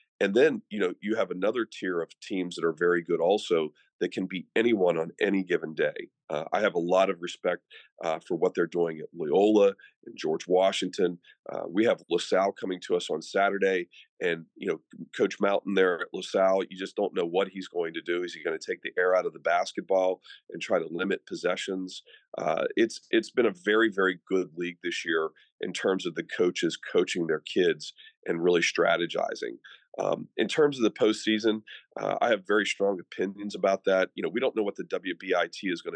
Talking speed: 215 wpm